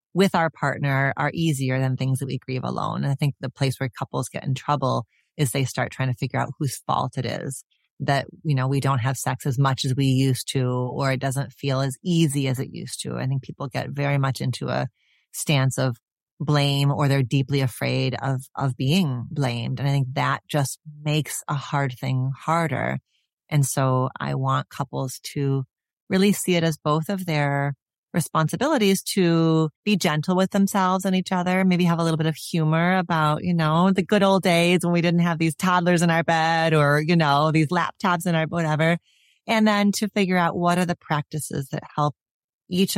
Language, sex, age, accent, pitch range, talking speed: English, female, 30-49, American, 135-165 Hz, 210 wpm